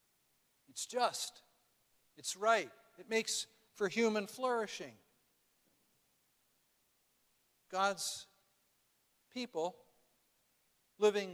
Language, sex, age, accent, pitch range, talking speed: English, male, 60-79, American, 180-225 Hz, 65 wpm